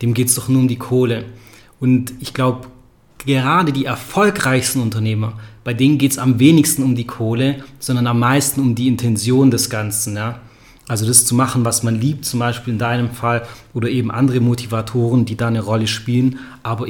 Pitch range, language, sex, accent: 120-135 Hz, German, male, German